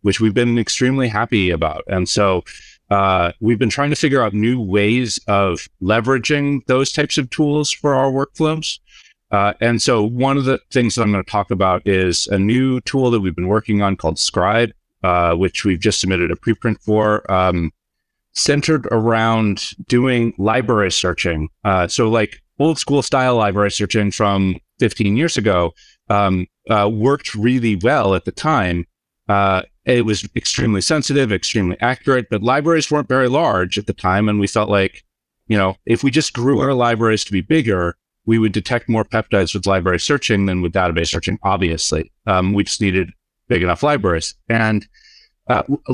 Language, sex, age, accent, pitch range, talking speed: English, male, 30-49, American, 95-130 Hz, 175 wpm